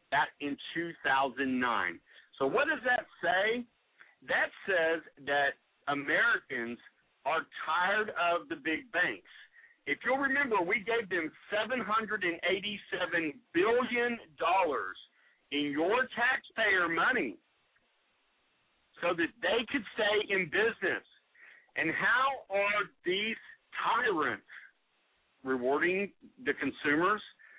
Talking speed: 100 wpm